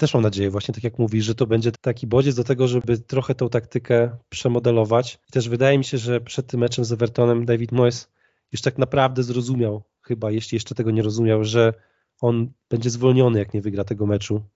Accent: native